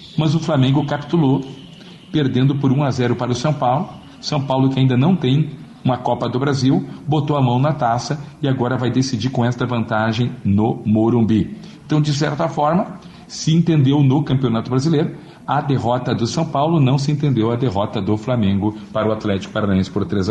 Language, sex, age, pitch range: Portuguese, male, 40-59, 110-145 Hz